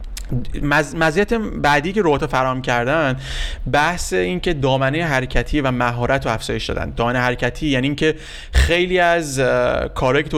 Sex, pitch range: male, 115-145 Hz